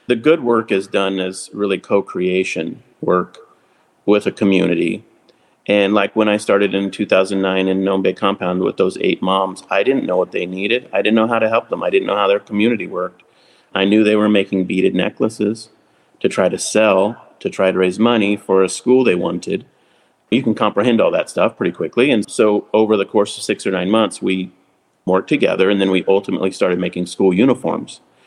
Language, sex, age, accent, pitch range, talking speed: English, male, 30-49, American, 95-110 Hz, 205 wpm